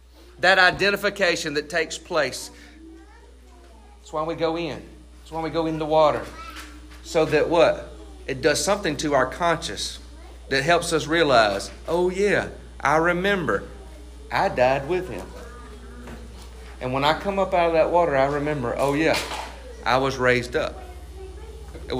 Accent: American